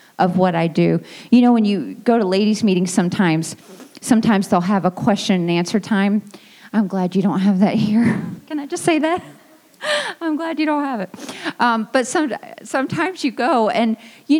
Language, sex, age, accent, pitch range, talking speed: English, female, 30-49, American, 190-270 Hz, 195 wpm